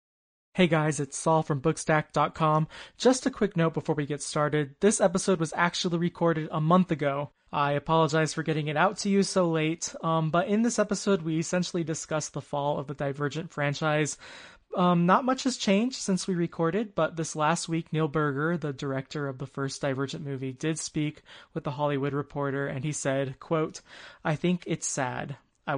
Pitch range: 145-175 Hz